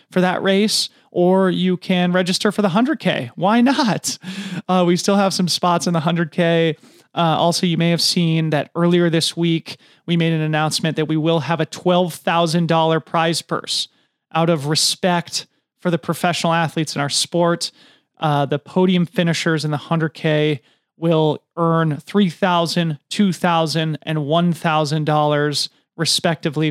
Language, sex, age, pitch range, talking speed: English, male, 30-49, 150-180 Hz, 150 wpm